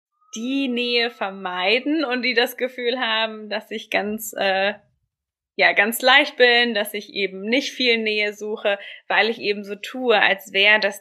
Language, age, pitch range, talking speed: German, 20-39, 200-255 Hz, 170 wpm